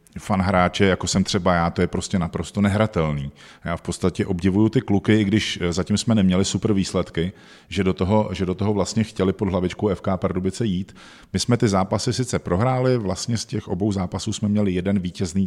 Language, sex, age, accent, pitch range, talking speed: Czech, male, 40-59, native, 90-105 Hz, 200 wpm